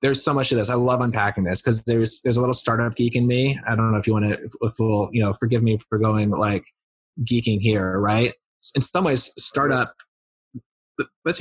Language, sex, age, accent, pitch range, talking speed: English, male, 20-39, American, 105-125 Hz, 215 wpm